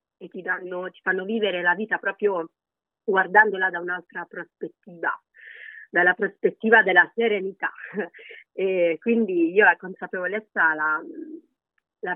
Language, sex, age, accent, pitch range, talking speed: Italian, female, 40-59, native, 170-220 Hz, 120 wpm